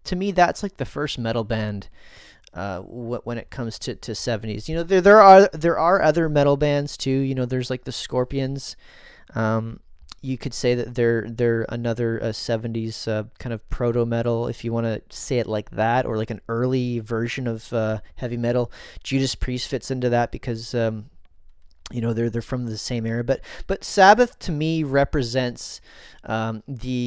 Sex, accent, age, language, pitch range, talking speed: male, American, 30-49, English, 115-140 Hz, 195 wpm